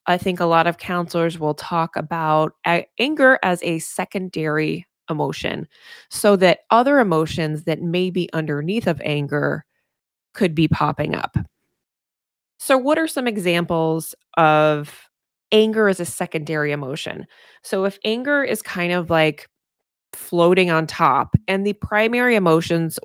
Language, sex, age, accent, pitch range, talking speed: English, female, 20-39, American, 155-200 Hz, 140 wpm